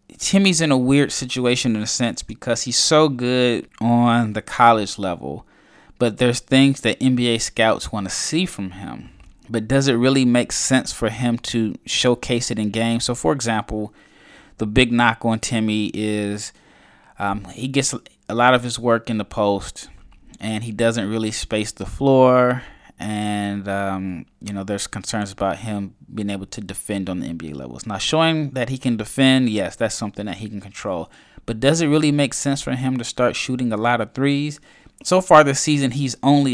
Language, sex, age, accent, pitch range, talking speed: English, male, 20-39, American, 110-130 Hz, 190 wpm